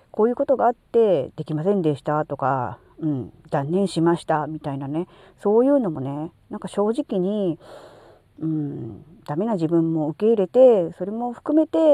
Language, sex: Japanese, female